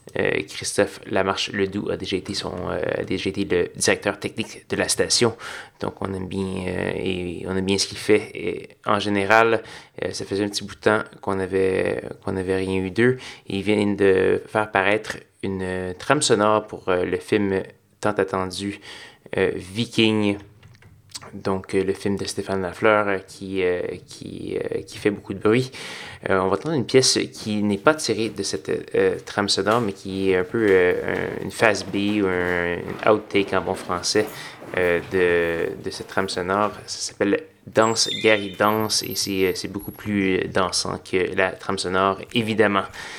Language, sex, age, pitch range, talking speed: French, male, 20-39, 95-110 Hz, 190 wpm